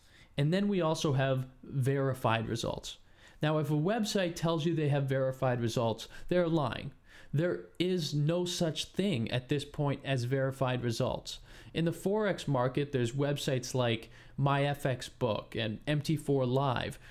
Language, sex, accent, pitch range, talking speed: English, male, American, 125-155 Hz, 140 wpm